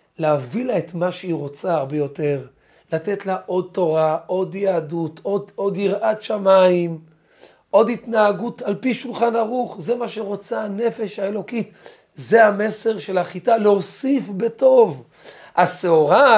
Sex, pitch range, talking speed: male, 160-220 Hz, 130 wpm